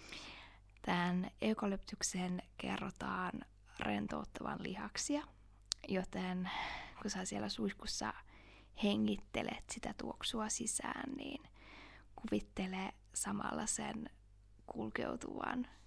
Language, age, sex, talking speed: Finnish, 20-39, female, 70 wpm